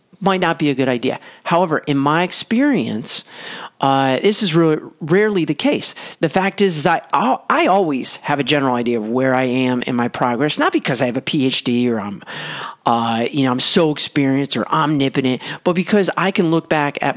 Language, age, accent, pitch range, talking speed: English, 40-59, American, 130-165 Hz, 205 wpm